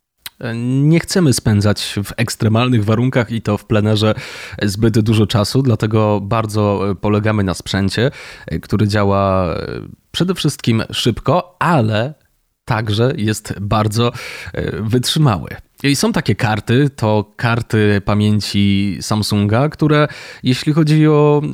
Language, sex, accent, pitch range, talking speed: Polish, male, native, 105-130 Hz, 110 wpm